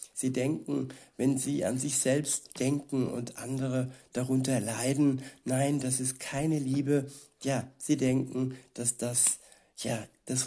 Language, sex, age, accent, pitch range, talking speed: German, male, 60-79, German, 130-145 Hz, 130 wpm